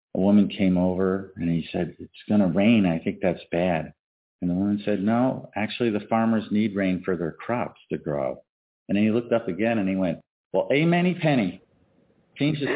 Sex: male